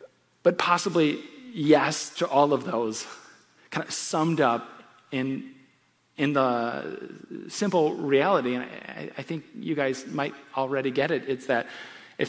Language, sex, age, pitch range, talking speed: English, male, 30-49, 135-185 Hz, 140 wpm